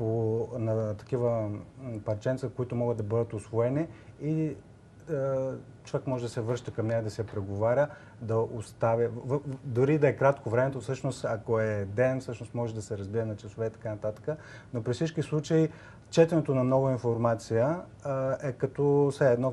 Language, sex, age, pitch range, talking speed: Bulgarian, male, 30-49, 110-130 Hz, 180 wpm